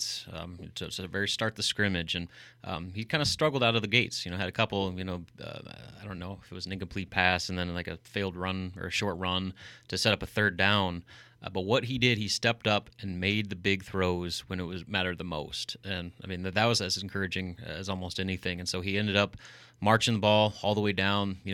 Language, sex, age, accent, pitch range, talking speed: English, male, 30-49, American, 90-110 Hz, 260 wpm